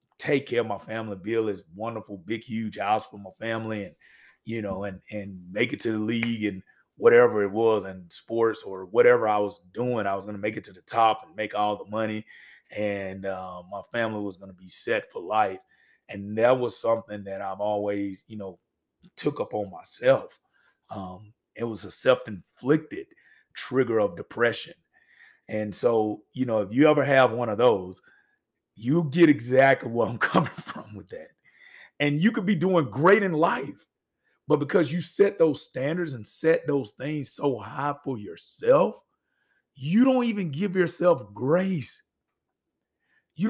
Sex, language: male, English